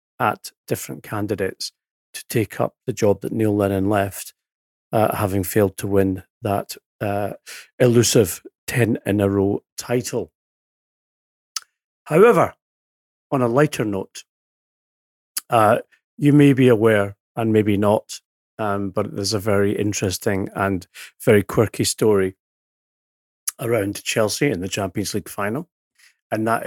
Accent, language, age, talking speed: British, English, 40-59, 130 wpm